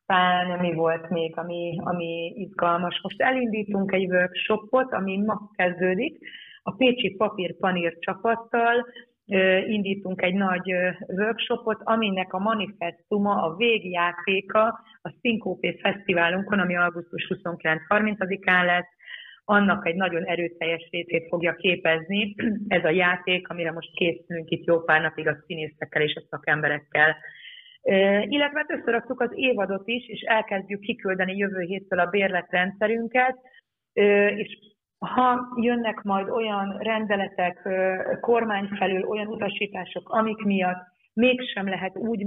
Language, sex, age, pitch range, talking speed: Hungarian, female, 30-49, 180-215 Hz, 120 wpm